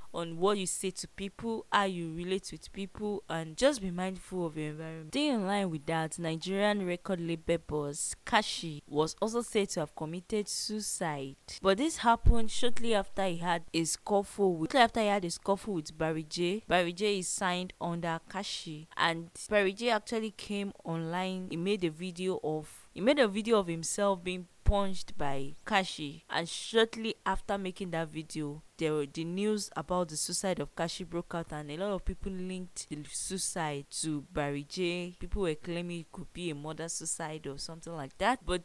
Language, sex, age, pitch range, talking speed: English, female, 20-39, 160-195 Hz, 190 wpm